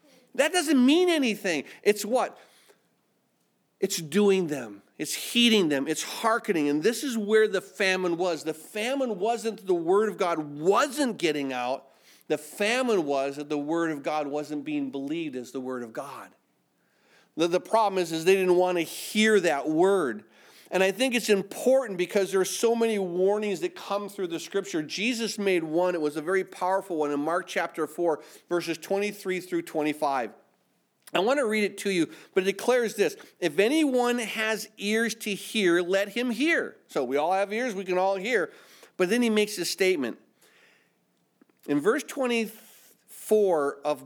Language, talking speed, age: English, 175 wpm, 40-59